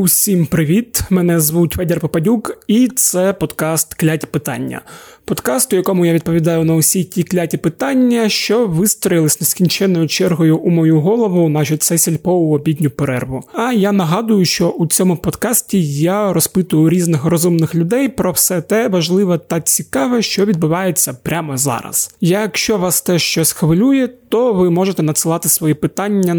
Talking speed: 150 wpm